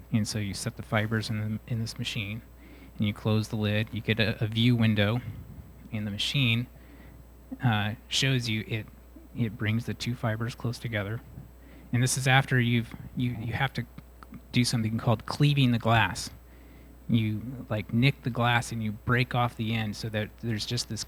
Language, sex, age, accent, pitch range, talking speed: English, male, 20-39, American, 105-125 Hz, 190 wpm